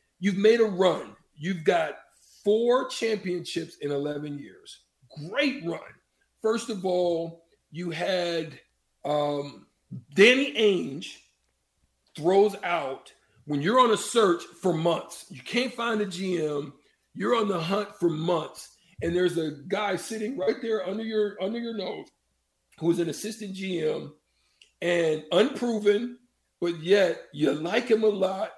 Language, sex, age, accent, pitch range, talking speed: English, male, 50-69, American, 160-210 Hz, 140 wpm